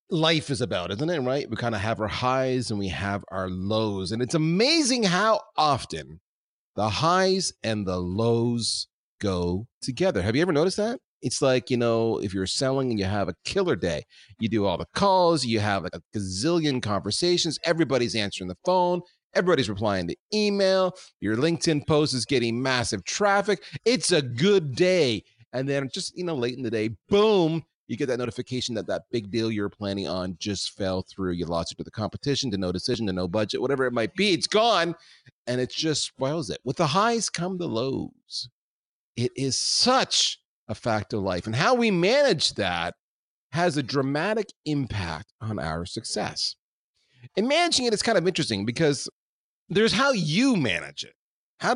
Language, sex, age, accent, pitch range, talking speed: English, male, 30-49, American, 105-170 Hz, 190 wpm